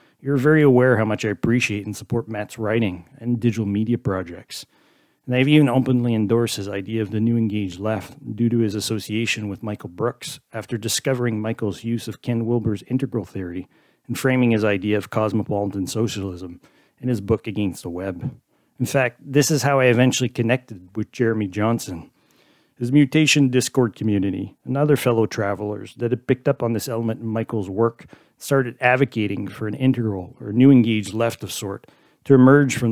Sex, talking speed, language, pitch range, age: male, 180 wpm, English, 105-125 Hz, 40-59